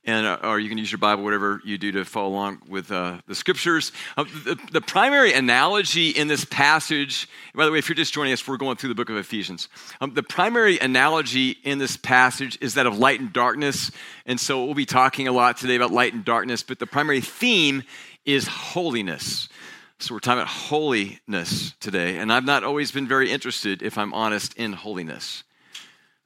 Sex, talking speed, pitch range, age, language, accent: male, 205 wpm, 110-140 Hz, 40-59, English, American